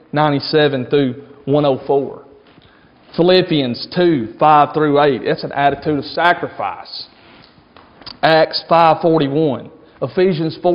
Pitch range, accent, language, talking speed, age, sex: 145-175 Hz, American, English, 125 wpm, 40-59, male